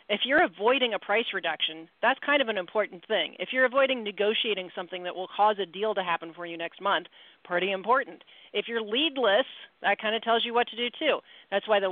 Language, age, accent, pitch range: English, 40-59, American, 185-240 Hz